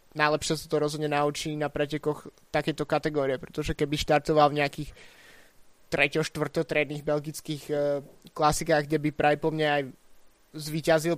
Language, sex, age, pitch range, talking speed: Slovak, male, 20-39, 145-155 Hz, 135 wpm